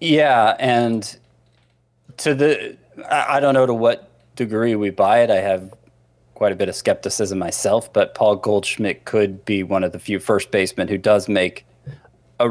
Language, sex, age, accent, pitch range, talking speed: English, male, 20-39, American, 95-120 Hz, 175 wpm